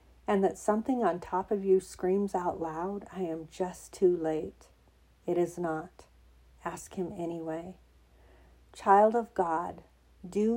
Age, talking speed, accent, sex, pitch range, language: 50-69, 140 wpm, American, female, 155-185 Hz, English